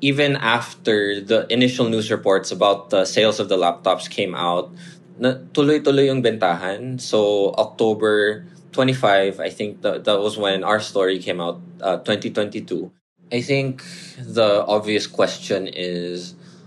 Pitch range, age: 95-135 Hz, 20-39